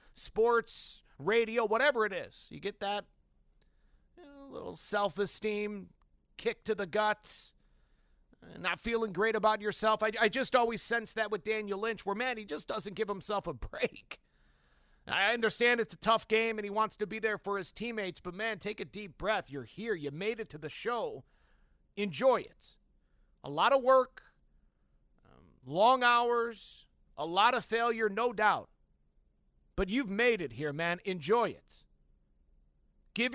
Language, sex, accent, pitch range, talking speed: English, male, American, 160-225 Hz, 165 wpm